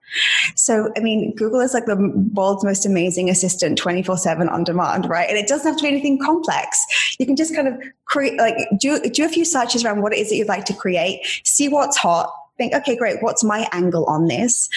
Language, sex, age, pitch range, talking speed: English, female, 20-39, 185-230 Hz, 225 wpm